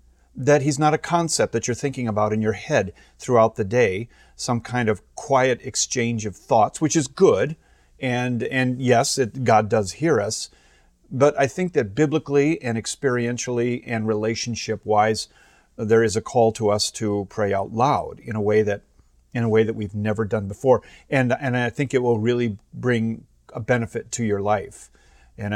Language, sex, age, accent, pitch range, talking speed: English, male, 40-59, American, 105-135 Hz, 185 wpm